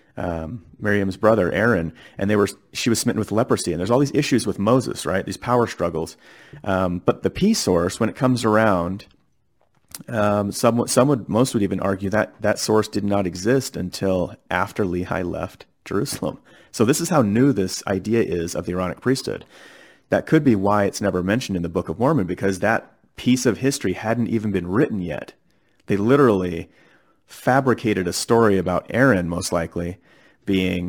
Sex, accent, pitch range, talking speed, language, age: male, American, 90-110 Hz, 185 wpm, English, 30-49